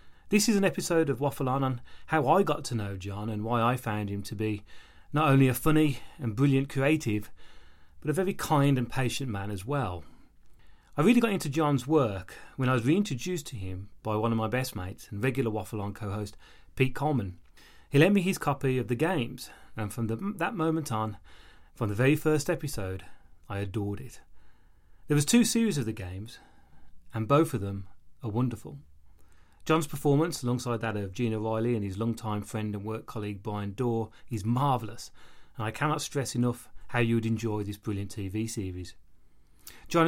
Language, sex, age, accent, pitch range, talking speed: English, male, 30-49, British, 105-145 Hz, 190 wpm